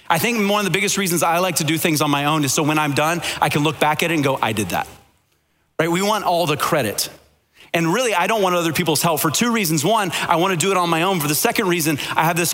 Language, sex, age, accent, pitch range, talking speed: English, male, 30-49, American, 155-195 Hz, 300 wpm